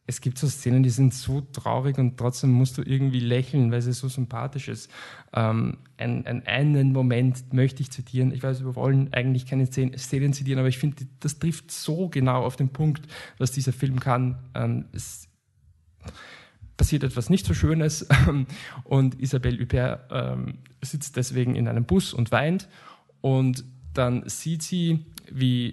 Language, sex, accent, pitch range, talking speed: German, male, German, 120-140 Hz, 165 wpm